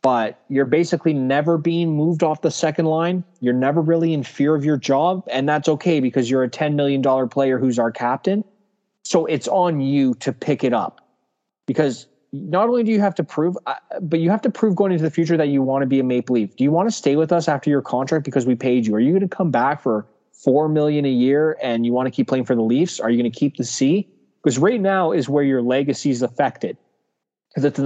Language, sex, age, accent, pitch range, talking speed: English, male, 20-39, American, 125-165 Hz, 250 wpm